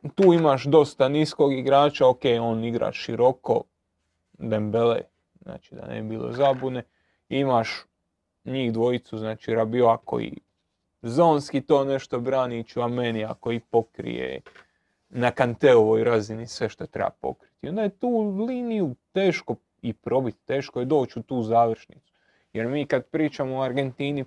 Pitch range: 115-135 Hz